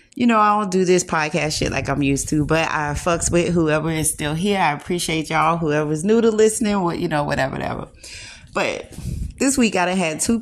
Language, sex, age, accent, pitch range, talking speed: English, female, 30-49, American, 150-190 Hz, 215 wpm